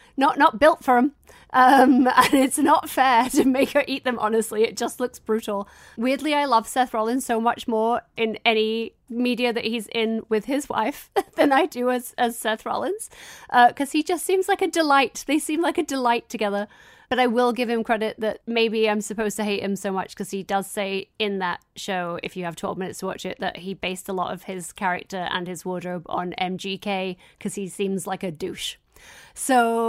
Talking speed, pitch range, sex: 215 wpm, 220-270 Hz, female